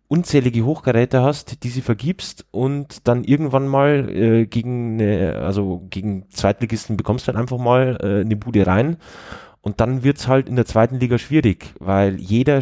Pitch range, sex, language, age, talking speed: 95-125 Hz, male, German, 20-39, 165 wpm